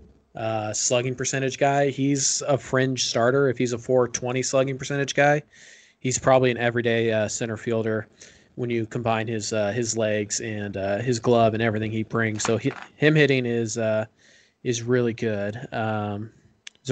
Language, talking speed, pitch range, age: English, 170 wpm, 115-130 Hz, 20-39